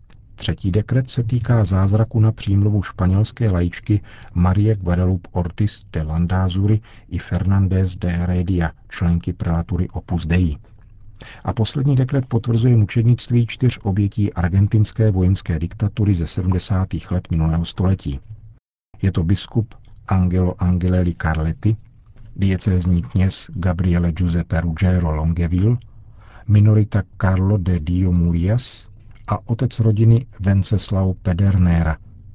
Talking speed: 110 wpm